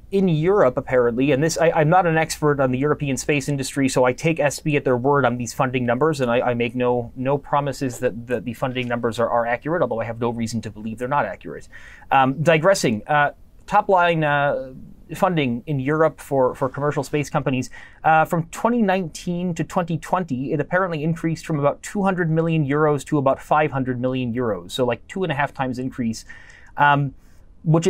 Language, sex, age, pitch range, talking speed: English, male, 30-49, 125-160 Hz, 200 wpm